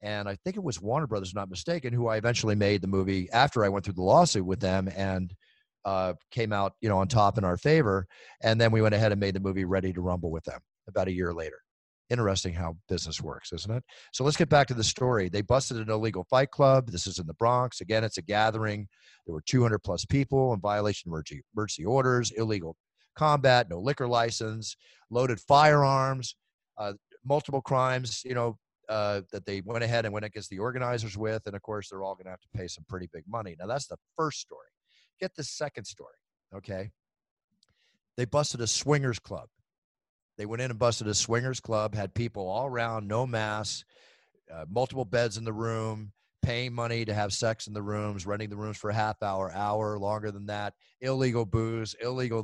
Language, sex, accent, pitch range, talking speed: English, male, American, 100-120 Hz, 210 wpm